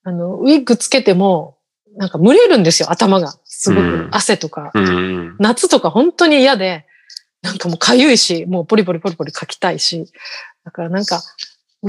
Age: 40-59